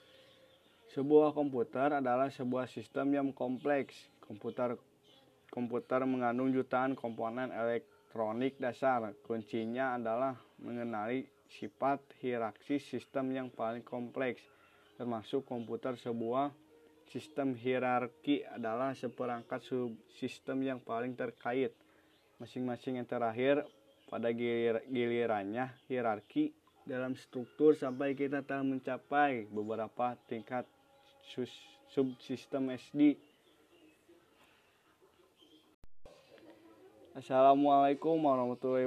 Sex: male